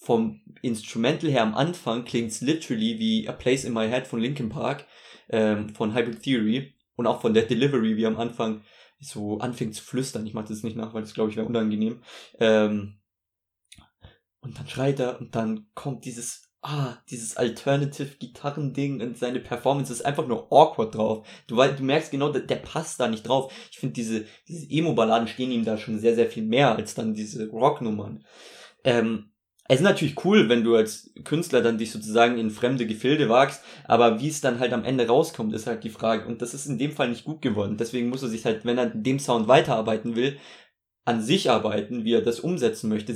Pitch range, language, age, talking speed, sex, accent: 110-135 Hz, German, 20-39, 205 wpm, male, German